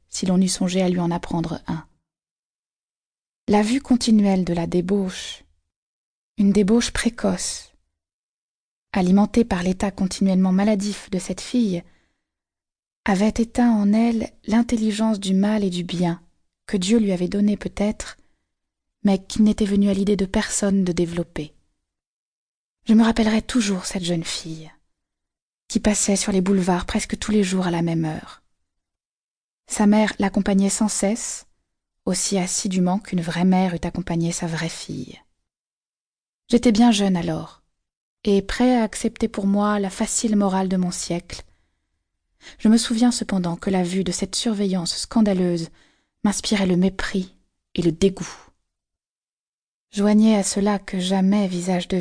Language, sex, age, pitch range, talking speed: French, female, 20-39, 180-215 Hz, 145 wpm